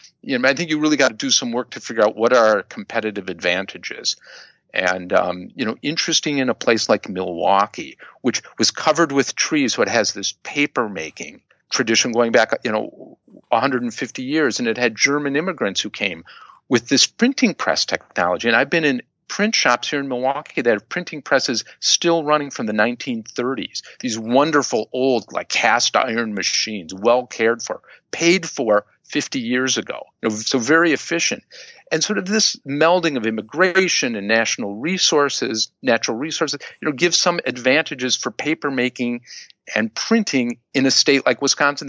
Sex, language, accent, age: male, English, American, 50-69